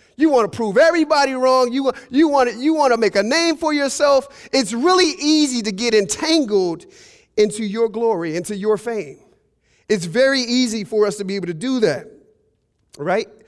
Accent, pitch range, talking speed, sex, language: American, 195-270 Hz, 185 wpm, male, English